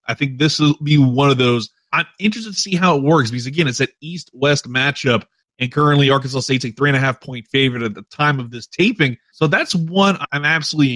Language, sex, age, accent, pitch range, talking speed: English, male, 30-49, American, 130-160 Hz, 225 wpm